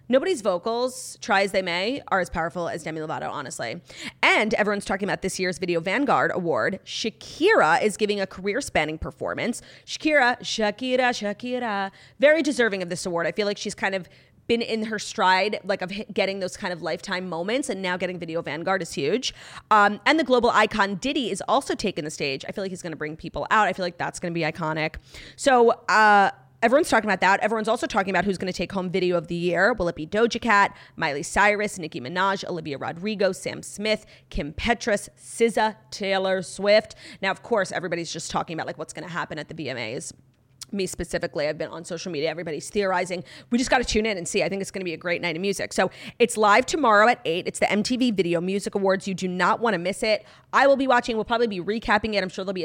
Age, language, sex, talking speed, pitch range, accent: 30-49, English, female, 230 wpm, 175-215 Hz, American